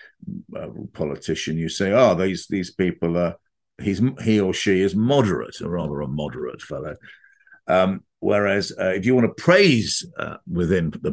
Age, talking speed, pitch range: 50-69, 165 wpm, 80-100 Hz